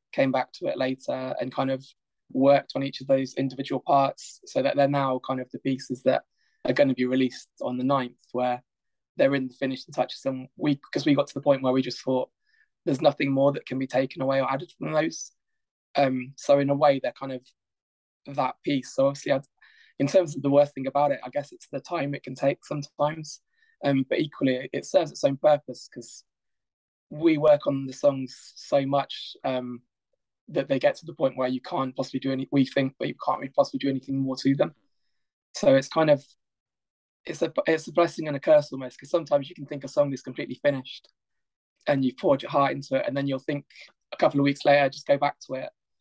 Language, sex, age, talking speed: English, male, 20-39, 225 wpm